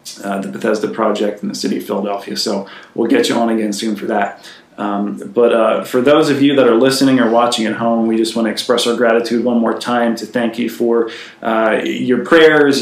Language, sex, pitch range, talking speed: English, male, 115-130 Hz, 230 wpm